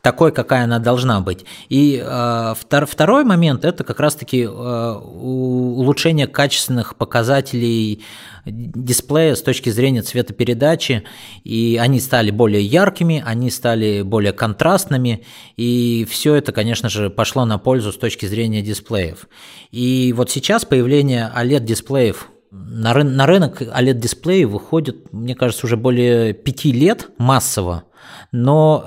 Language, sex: Russian, male